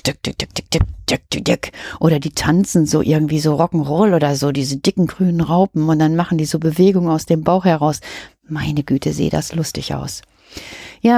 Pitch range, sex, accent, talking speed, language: 150-185 Hz, female, German, 160 wpm, German